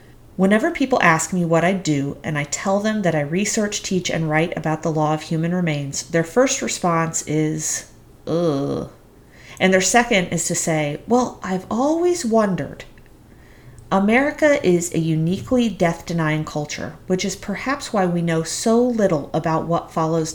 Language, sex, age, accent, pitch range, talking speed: English, female, 40-59, American, 155-205 Hz, 160 wpm